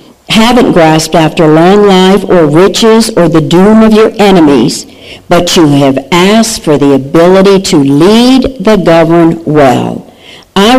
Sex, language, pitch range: female, English, 160-210 Hz